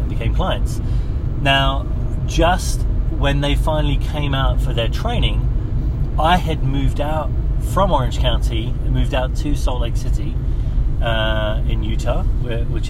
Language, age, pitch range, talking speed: English, 30-49, 110-130 Hz, 140 wpm